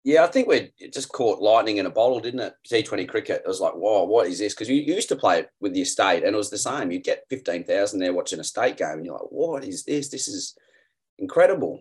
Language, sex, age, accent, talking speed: English, male, 30-49, Australian, 265 wpm